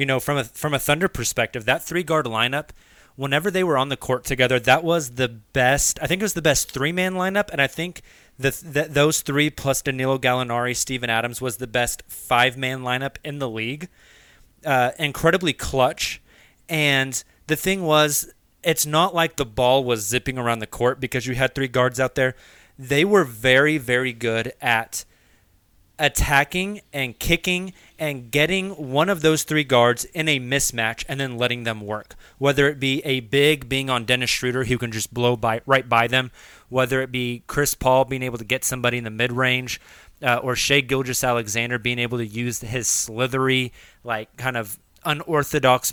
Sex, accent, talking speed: male, American, 190 wpm